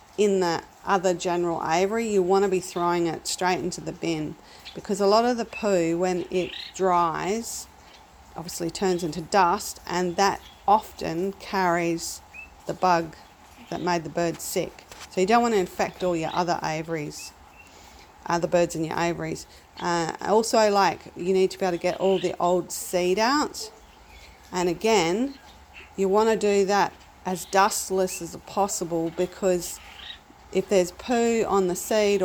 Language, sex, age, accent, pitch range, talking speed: English, female, 40-59, Australian, 175-200 Hz, 165 wpm